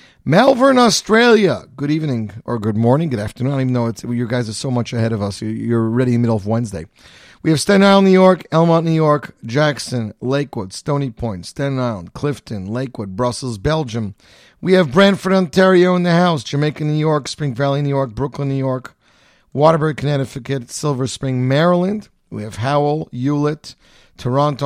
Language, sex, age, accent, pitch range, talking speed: English, male, 40-59, American, 115-150 Hz, 185 wpm